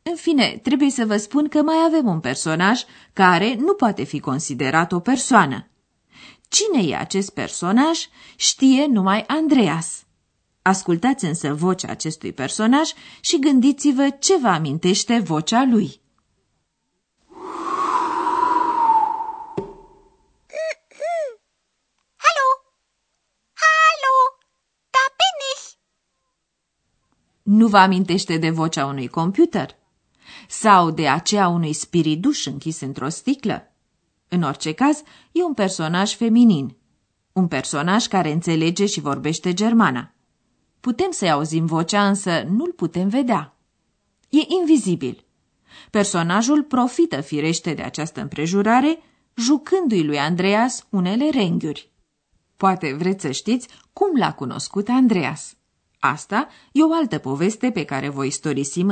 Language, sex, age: Romanian, female, 30-49